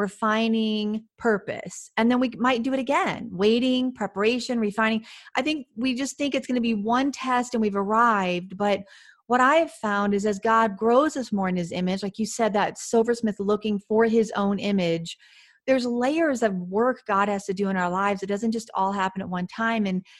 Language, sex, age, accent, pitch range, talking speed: English, female, 40-59, American, 200-240 Hz, 205 wpm